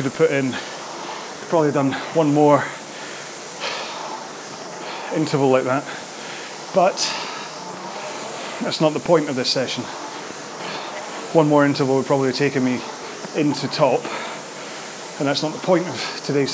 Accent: British